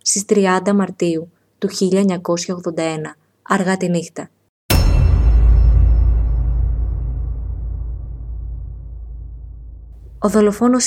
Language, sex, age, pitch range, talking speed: Greek, female, 20-39, 165-210 Hz, 55 wpm